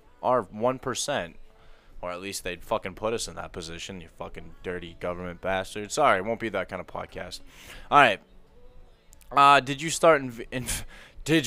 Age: 20-39